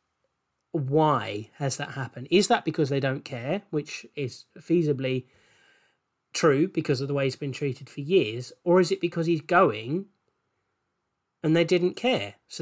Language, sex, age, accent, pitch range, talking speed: English, male, 30-49, British, 130-155 Hz, 160 wpm